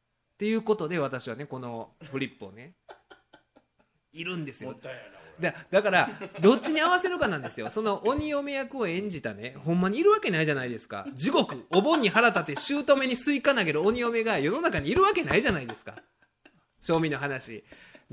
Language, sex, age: Japanese, male, 20-39